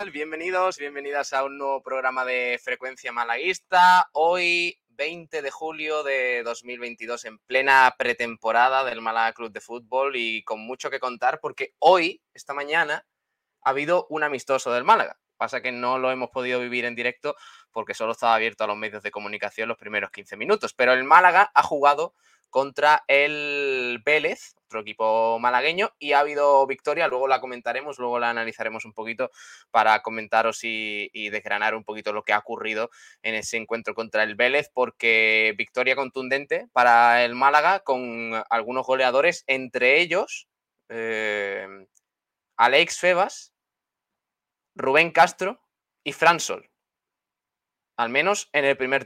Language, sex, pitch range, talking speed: Spanish, male, 115-145 Hz, 150 wpm